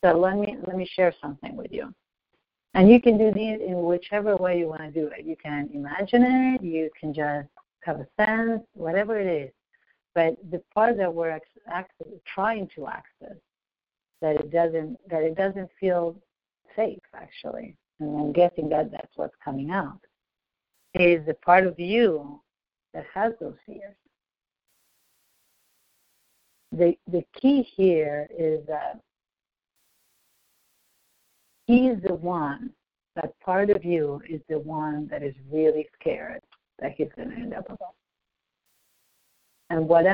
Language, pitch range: English, 160-205 Hz